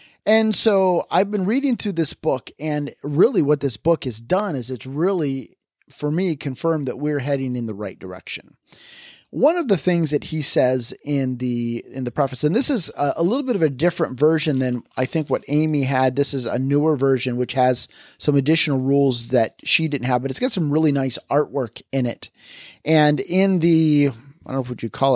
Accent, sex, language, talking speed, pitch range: American, male, English, 210 wpm, 125-160 Hz